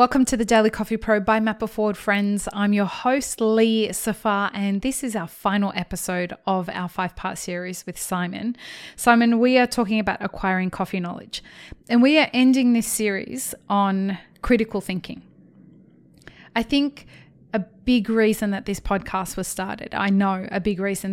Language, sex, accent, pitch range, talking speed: English, female, Australian, 190-225 Hz, 170 wpm